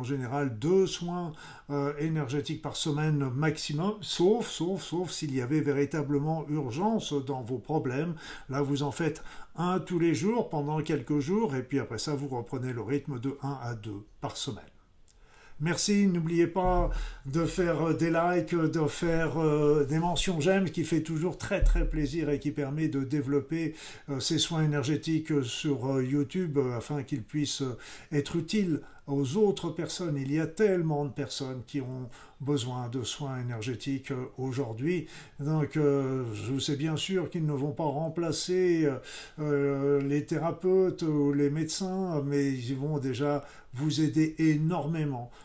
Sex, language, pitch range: male, French, 135-160 Hz